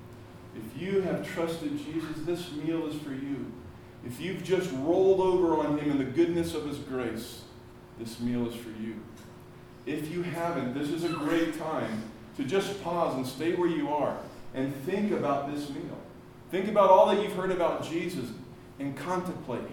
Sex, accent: male, American